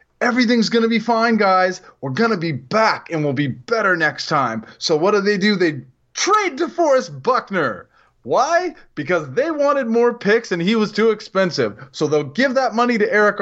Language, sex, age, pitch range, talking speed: English, male, 20-39, 185-255 Hz, 190 wpm